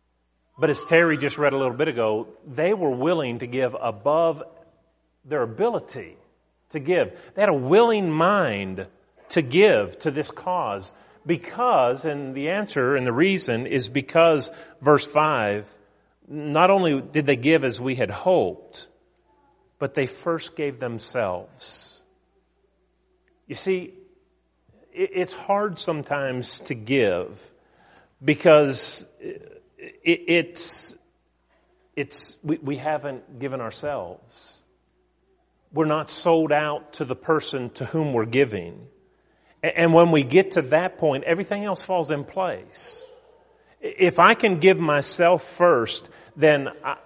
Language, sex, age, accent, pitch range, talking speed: English, male, 40-59, American, 130-170 Hz, 130 wpm